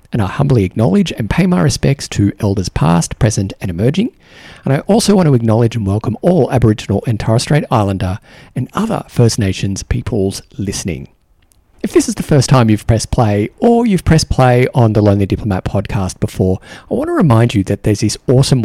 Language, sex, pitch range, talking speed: English, male, 100-135 Hz, 200 wpm